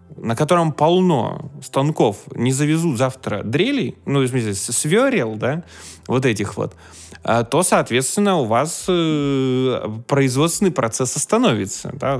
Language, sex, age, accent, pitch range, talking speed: Russian, male, 20-39, native, 115-175 Hz, 115 wpm